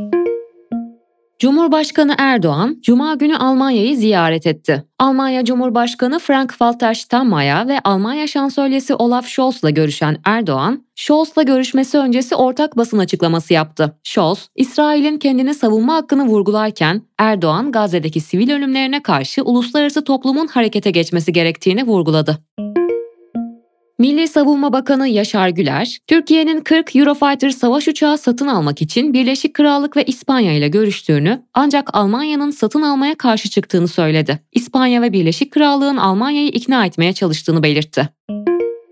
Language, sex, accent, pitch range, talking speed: Turkish, female, native, 175-280 Hz, 120 wpm